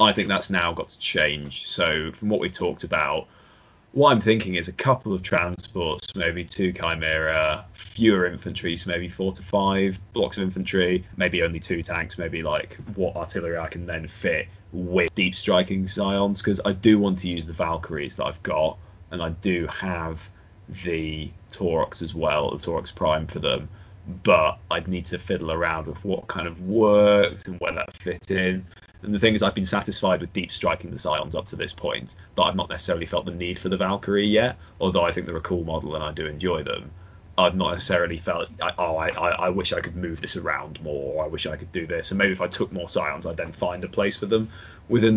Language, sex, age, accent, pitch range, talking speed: English, male, 20-39, British, 85-100 Hz, 220 wpm